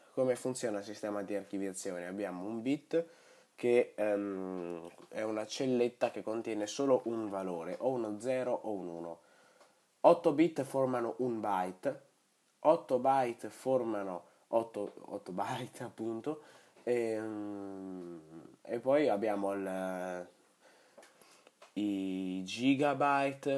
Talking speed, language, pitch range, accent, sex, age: 110 wpm, Italian, 95-120 Hz, native, male, 20-39